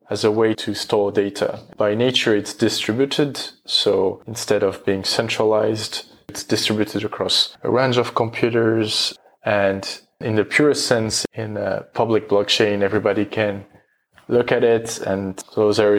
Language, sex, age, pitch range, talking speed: English, male, 20-39, 100-115 Hz, 145 wpm